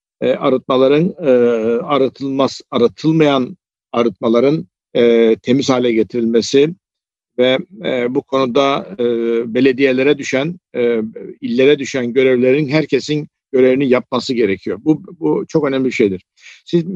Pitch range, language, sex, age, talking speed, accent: 125-145 Hz, Turkish, male, 50-69, 110 wpm, native